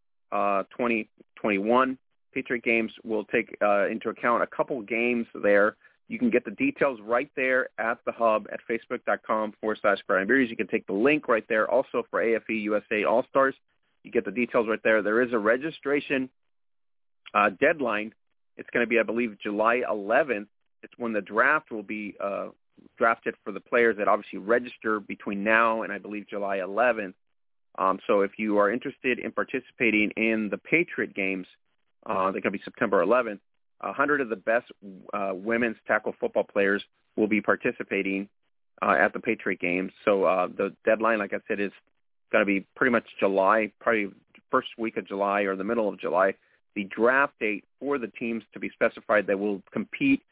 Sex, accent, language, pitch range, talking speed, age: male, American, English, 100-120 Hz, 180 wpm, 40-59